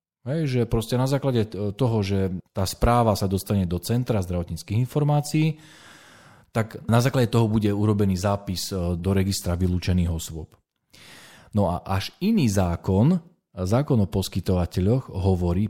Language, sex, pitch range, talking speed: Slovak, male, 90-120 Hz, 130 wpm